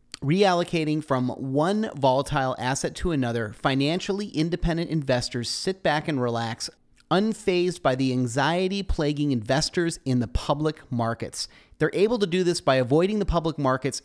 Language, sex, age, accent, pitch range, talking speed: English, male, 30-49, American, 130-165 Hz, 145 wpm